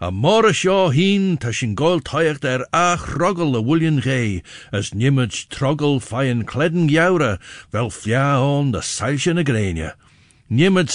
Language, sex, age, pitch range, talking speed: English, male, 60-79, 95-140 Hz, 150 wpm